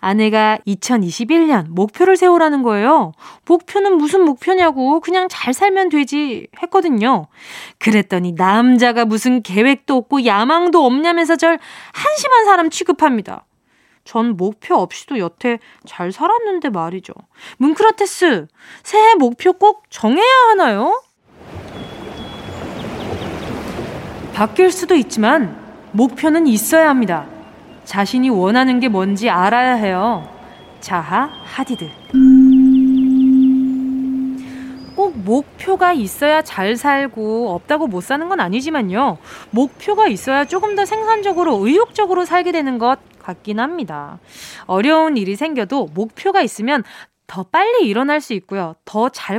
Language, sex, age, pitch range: Korean, female, 20-39, 225-340 Hz